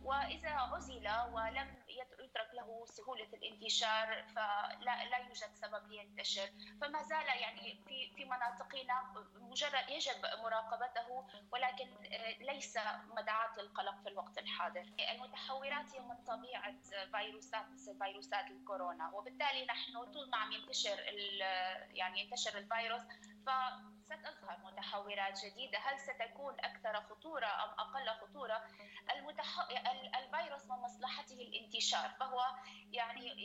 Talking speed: 105 wpm